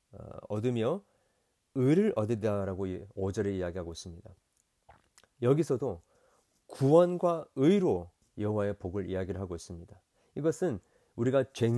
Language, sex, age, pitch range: Korean, male, 40-59, 100-155 Hz